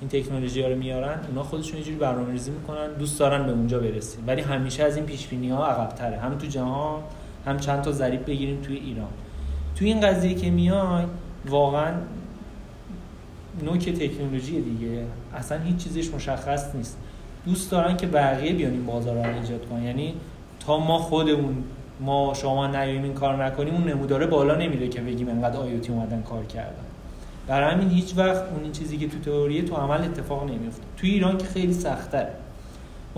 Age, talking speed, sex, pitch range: 30-49, 170 wpm, male, 130-165 Hz